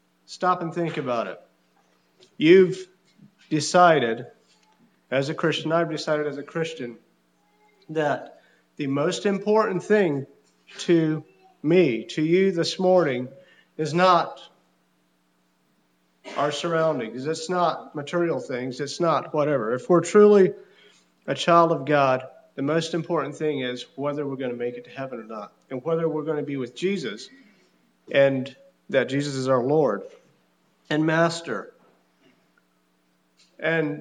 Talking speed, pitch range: 135 wpm, 140-185 Hz